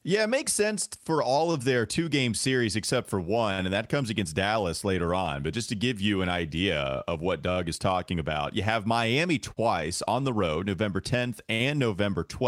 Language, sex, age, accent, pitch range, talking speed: English, male, 30-49, American, 95-130 Hz, 210 wpm